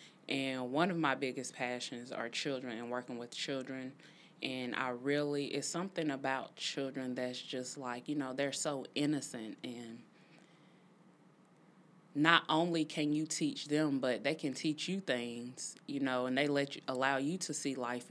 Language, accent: English, American